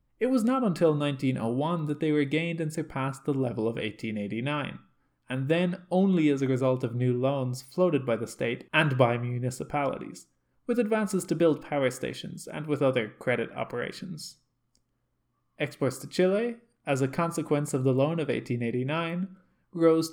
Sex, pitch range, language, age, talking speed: male, 125-180 Hz, English, 20-39, 160 wpm